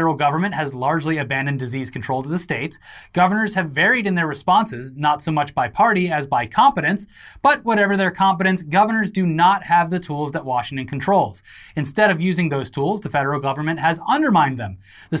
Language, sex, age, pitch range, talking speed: English, male, 30-49, 150-200 Hz, 190 wpm